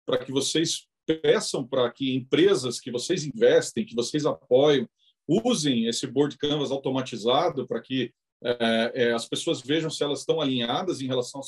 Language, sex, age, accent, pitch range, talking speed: Portuguese, male, 40-59, Brazilian, 135-205 Hz, 165 wpm